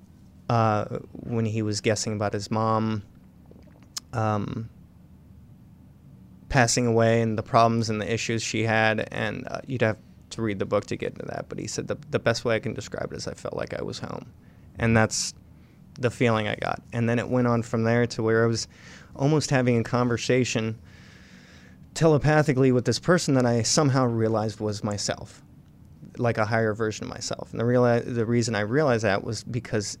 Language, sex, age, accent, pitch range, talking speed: English, male, 20-39, American, 110-125 Hz, 190 wpm